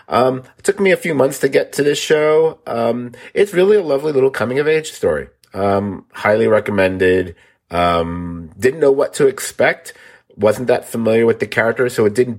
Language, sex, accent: English, male, American